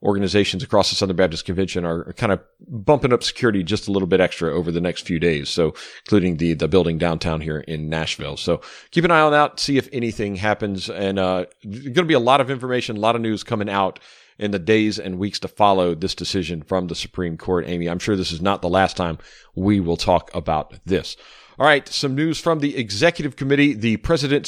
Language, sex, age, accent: English, male, 40-59, American